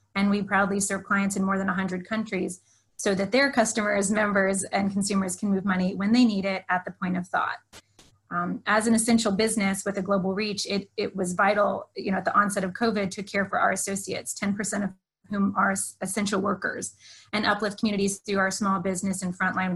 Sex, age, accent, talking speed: female, 20-39, American, 210 wpm